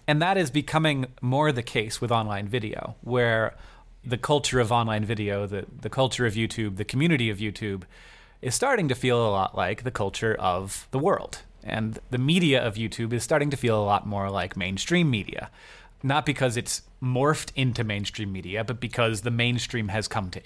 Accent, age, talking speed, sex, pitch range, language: American, 30-49, 195 wpm, male, 105-130 Hz, English